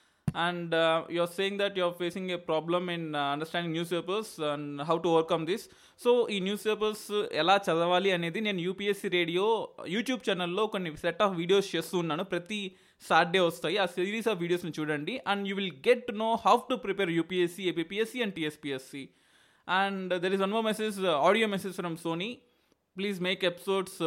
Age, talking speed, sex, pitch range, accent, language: 20-39, 180 wpm, male, 165-195 Hz, native, Telugu